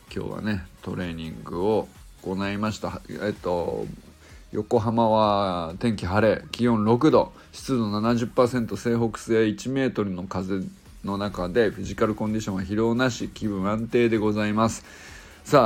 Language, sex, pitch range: Japanese, male, 100-130 Hz